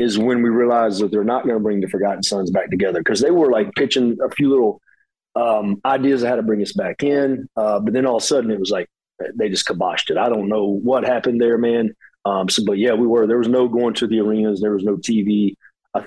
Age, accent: 40-59, American